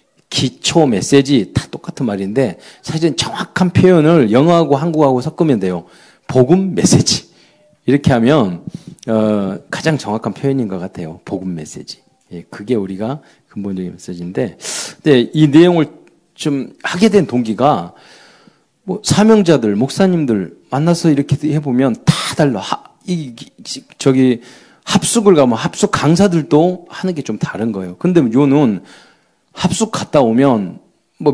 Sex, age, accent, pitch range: male, 40-59, native, 110-170 Hz